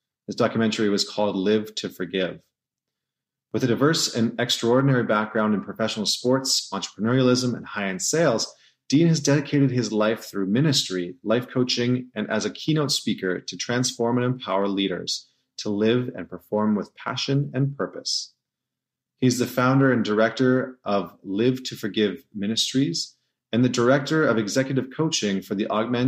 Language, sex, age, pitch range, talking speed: English, male, 30-49, 105-130 Hz, 150 wpm